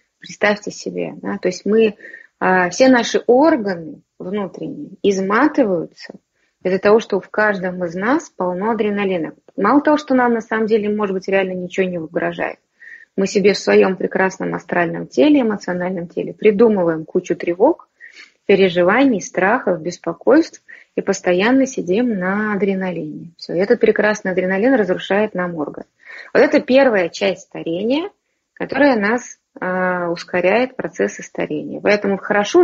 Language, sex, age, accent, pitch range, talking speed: Russian, female, 20-39, native, 180-245 Hz, 135 wpm